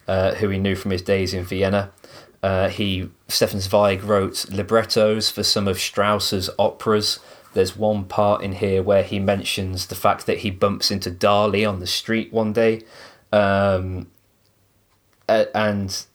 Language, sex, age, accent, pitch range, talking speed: English, male, 20-39, British, 95-105 Hz, 155 wpm